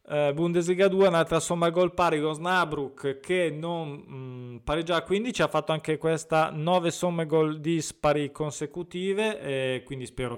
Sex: male